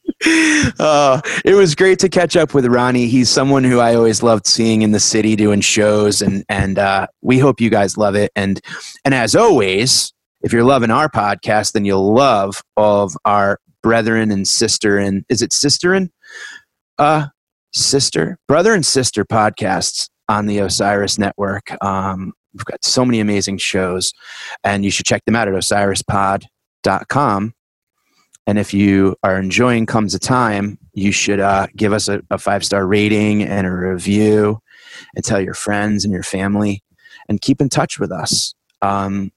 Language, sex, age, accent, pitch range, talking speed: English, male, 30-49, American, 100-115 Hz, 170 wpm